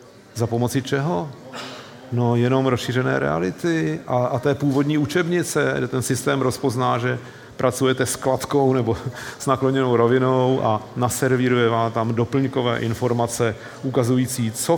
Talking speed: 130 wpm